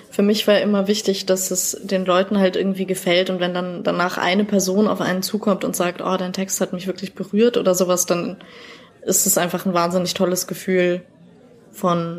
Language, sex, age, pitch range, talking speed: German, female, 20-39, 180-200 Hz, 200 wpm